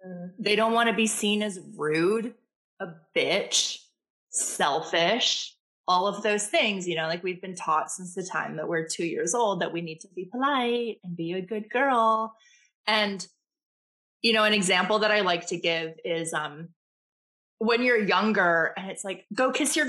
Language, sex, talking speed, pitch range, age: English, female, 185 wpm, 185-245 Hz, 20-39